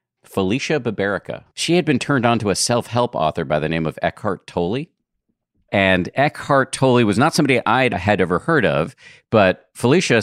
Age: 40-59